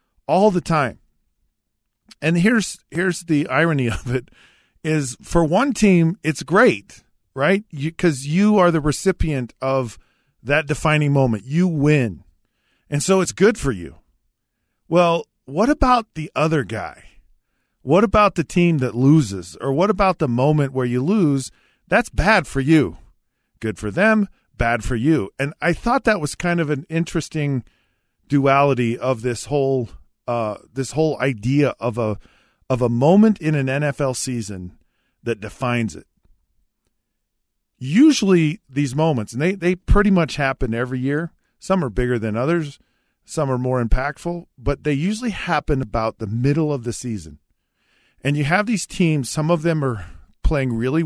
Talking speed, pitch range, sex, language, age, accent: 160 wpm, 125-170 Hz, male, English, 40-59, American